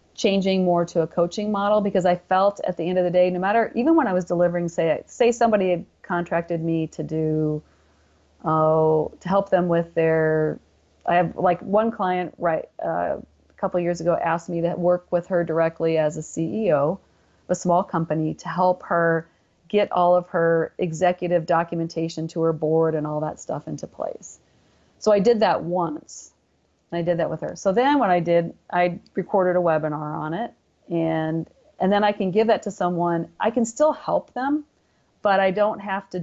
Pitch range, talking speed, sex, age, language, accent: 165-185 Hz, 200 wpm, female, 40-59, English, American